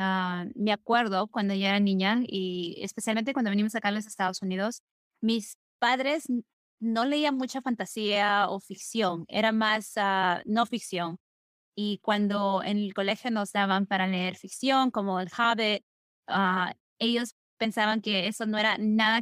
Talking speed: 155 wpm